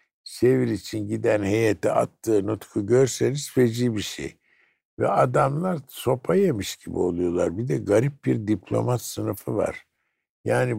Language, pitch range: Turkish, 105-145 Hz